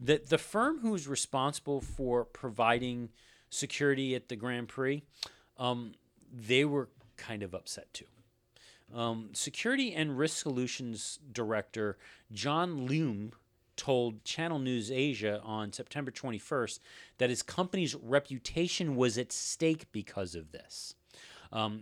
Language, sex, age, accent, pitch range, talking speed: English, male, 40-59, American, 110-140 Hz, 125 wpm